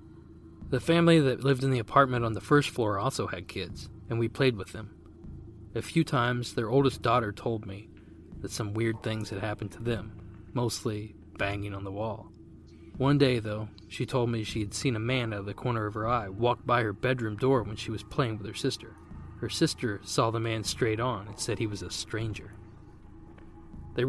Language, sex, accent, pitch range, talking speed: English, male, American, 100-125 Hz, 210 wpm